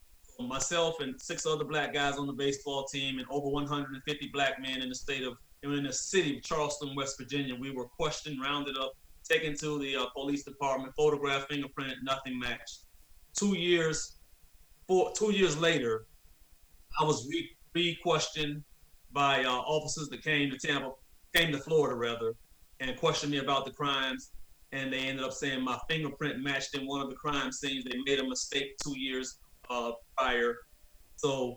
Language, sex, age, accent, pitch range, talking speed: English, male, 30-49, American, 130-145 Hz, 175 wpm